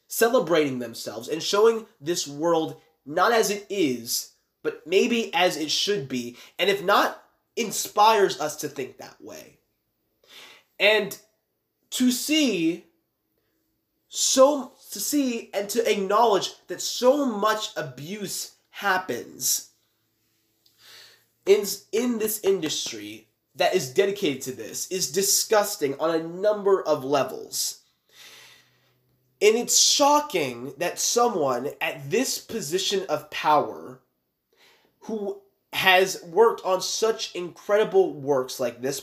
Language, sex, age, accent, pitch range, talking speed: English, male, 20-39, American, 145-215 Hz, 115 wpm